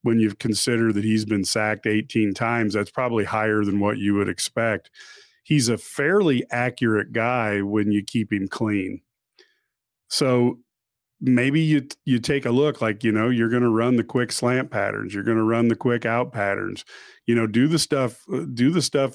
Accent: American